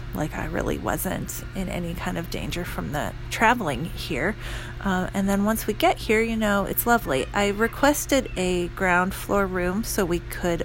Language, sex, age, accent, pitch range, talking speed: English, female, 30-49, American, 155-195 Hz, 185 wpm